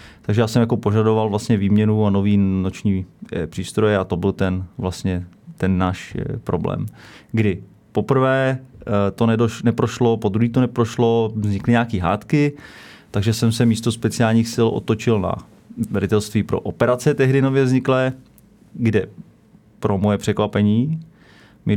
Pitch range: 105-115 Hz